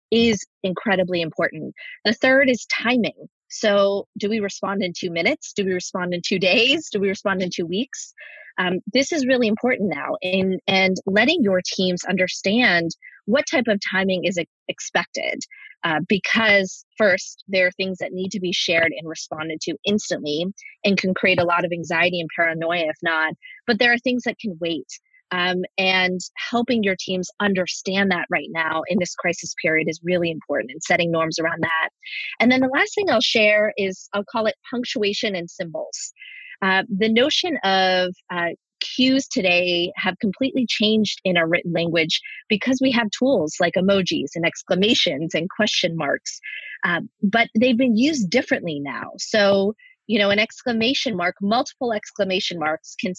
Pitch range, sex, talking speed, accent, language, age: 180-240 Hz, female, 175 wpm, American, English, 30-49